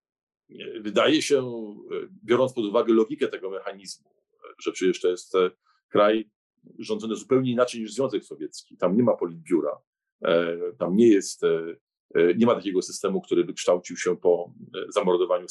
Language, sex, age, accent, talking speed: Polish, male, 40-59, native, 135 wpm